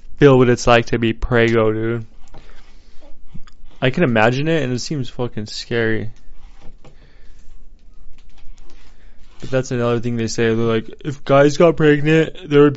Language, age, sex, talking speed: English, 20-39, male, 145 wpm